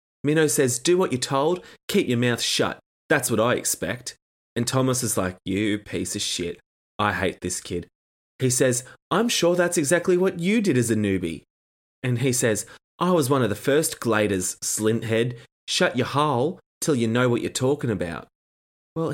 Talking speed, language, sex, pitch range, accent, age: 190 wpm, English, male, 110-170 Hz, Australian, 20-39